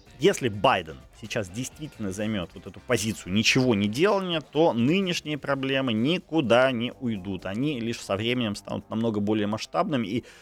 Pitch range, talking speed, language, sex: 100-130 Hz, 150 wpm, Ukrainian, male